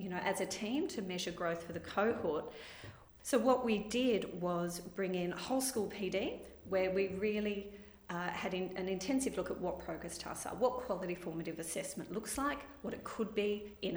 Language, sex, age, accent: English, female, 40-59, Australian